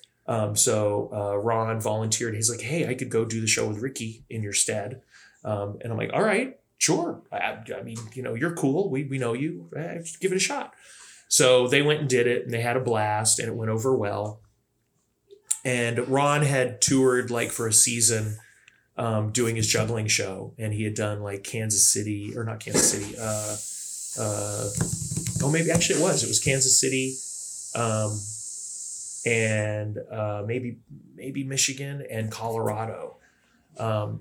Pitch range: 105-130 Hz